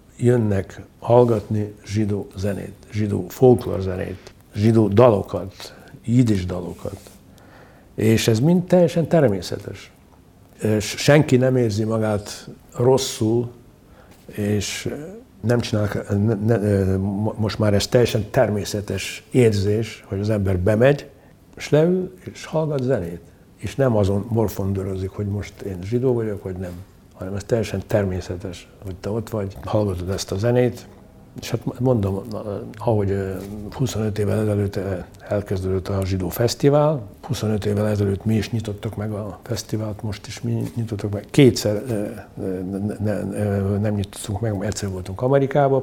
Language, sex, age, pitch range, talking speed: Hungarian, male, 60-79, 100-115 Hz, 130 wpm